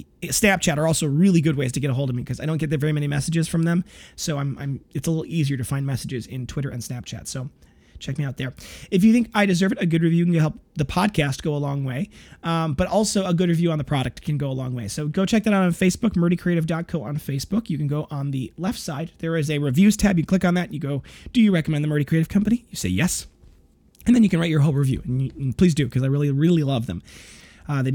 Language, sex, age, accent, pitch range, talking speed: English, male, 30-49, American, 140-180 Hz, 280 wpm